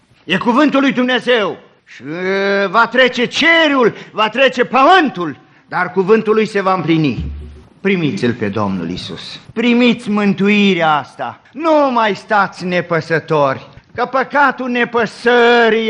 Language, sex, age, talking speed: Romanian, male, 50-69, 115 wpm